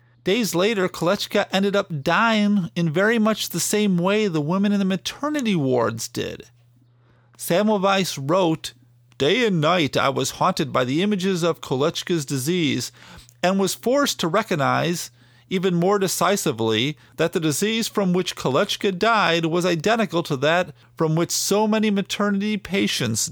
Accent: American